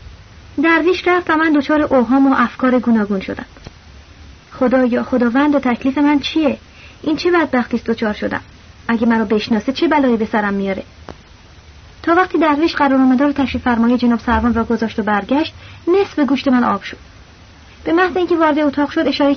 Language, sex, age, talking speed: Persian, female, 30-49, 165 wpm